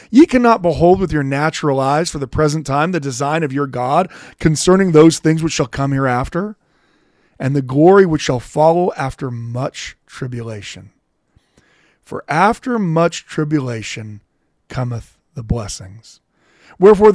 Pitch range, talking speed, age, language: 125-170 Hz, 140 wpm, 40-59, English